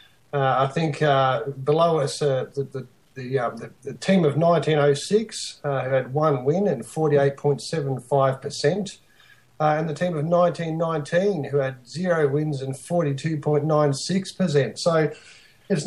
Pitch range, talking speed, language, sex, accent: 140-165 Hz, 130 wpm, English, male, Australian